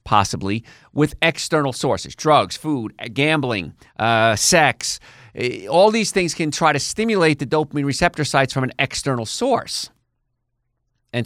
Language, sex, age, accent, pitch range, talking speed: English, male, 50-69, American, 120-155 Hz, 135 wpm